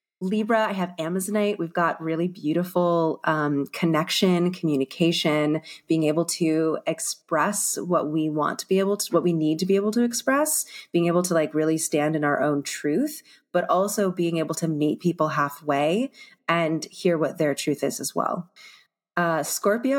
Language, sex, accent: English, female, American